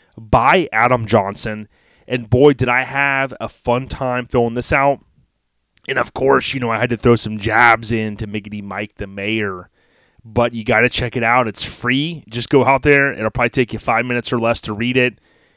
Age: 30-49